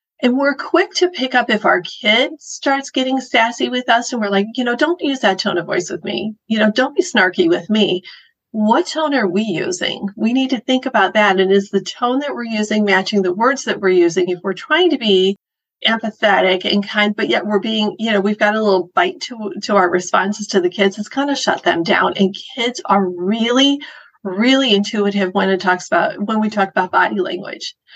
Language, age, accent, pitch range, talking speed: English, 40-59, American, 195-245 Hz, 230 wpm